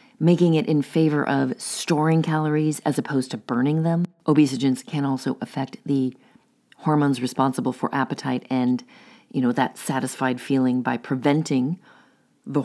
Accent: American